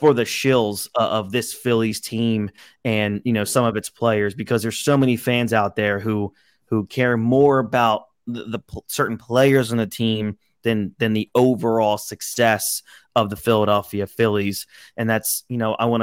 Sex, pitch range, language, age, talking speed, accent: male, 105-125 Hz, English, 30-49, 180 wpm, American